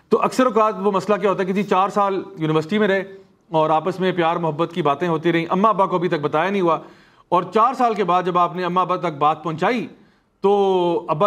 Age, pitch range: 40-59, 170-220 Hz